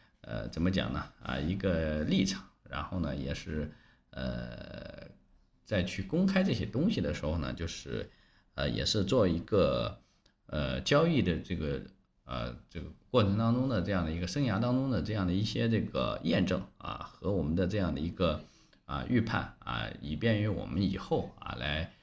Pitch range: 80-110 Hz